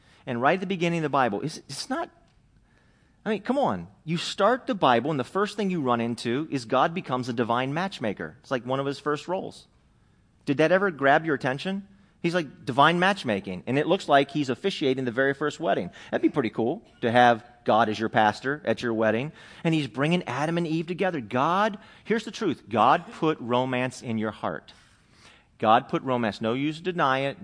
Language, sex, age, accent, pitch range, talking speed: English, male, 40-59, American, 110-155 Hz, 210 wpm